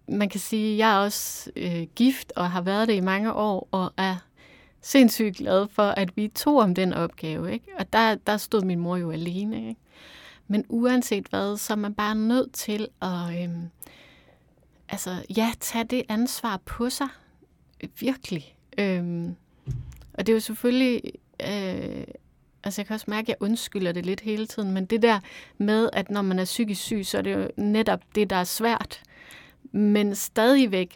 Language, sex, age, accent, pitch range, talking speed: Danish, female, 30-49, native, 185-220 Hz, 185 wpm